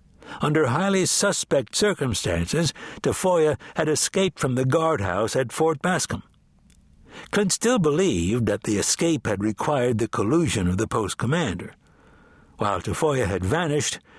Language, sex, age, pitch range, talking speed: English, male, 60-79, 100-155 Hz, 130 wpm